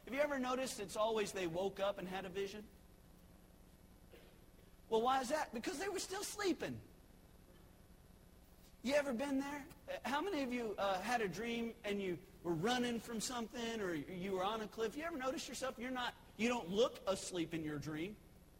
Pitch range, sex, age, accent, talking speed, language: 195-270 Hz, male, 40-59, American, 190 wpm, English